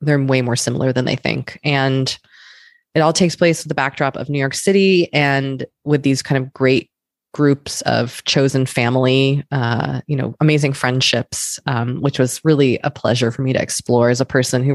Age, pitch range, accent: 20-39, 135-170 Hz, American